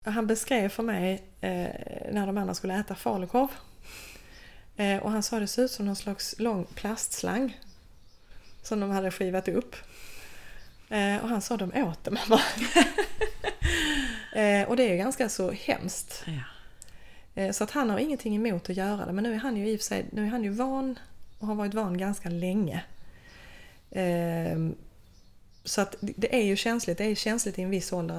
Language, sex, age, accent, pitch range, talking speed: Swedish, female, 20-39, native, 185-225 Hz, 185 wpm